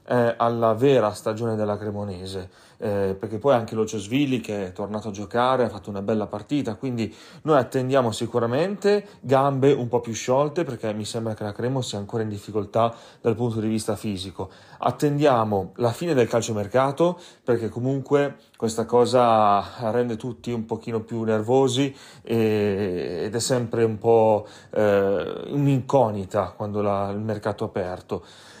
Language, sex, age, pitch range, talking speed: Italian, male, 30-49, 105-125 Hz, 155 wpm